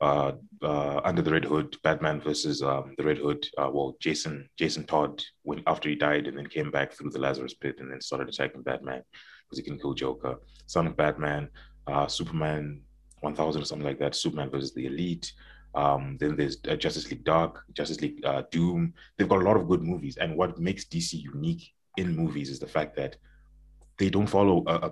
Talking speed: 205 wpm